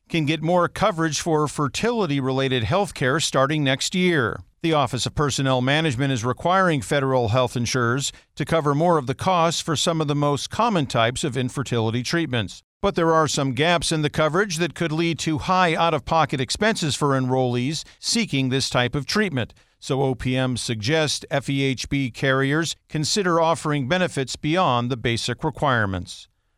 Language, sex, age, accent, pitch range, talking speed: English, male, 50-69, American, 130-165 Hz, 160 wpm